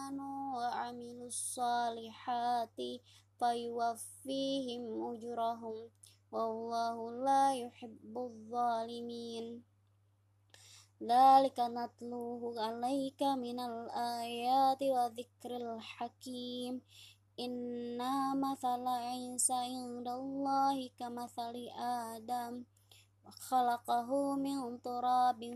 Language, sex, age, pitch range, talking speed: Indonesian, male, 20-39, 215-245 Hz, 55 wpm